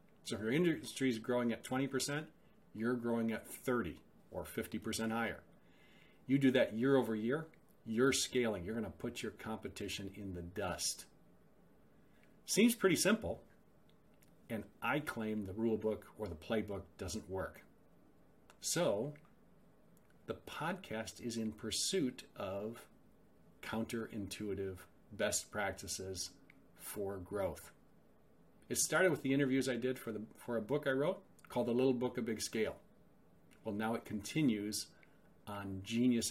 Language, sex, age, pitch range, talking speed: English, male, 40-59, 105-130 Hz, 140 wpm